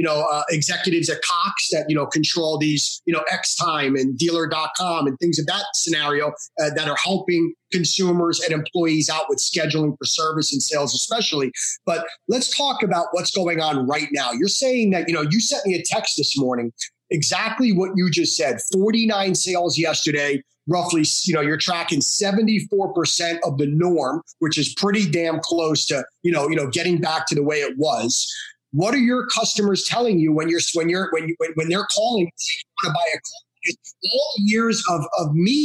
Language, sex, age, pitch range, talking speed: English, male, 30-49, 155-205 Hz, 200 wpm